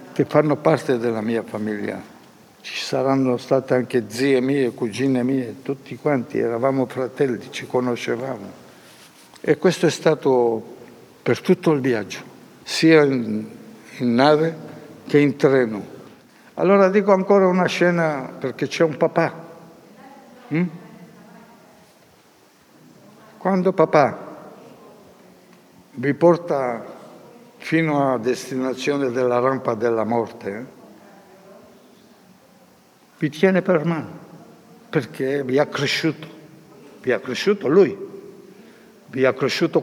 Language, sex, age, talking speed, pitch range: Italian, male, 60-79, 105 wpm, 130-190 Hz